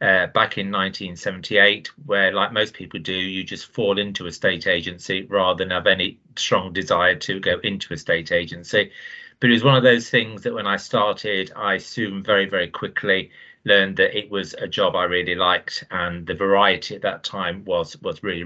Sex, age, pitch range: male, 40-59, 95-115 Hz